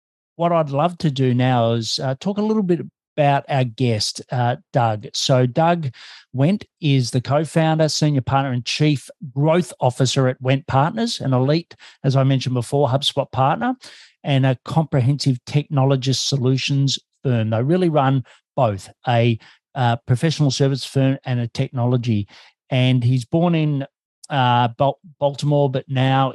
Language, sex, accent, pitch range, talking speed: English, male, Australian, 125-145 Hz, 150 wpm